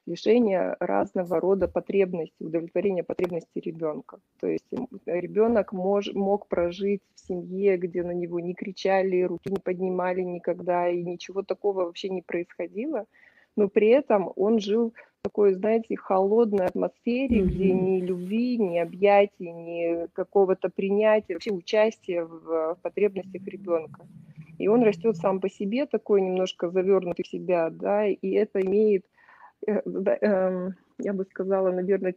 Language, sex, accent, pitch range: Russian, female, native, 175-210 Hz